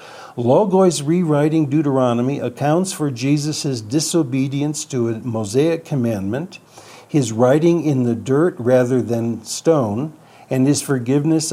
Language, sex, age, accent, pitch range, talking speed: English, male, 60-79, American, 120-145 Hz, 115 wpm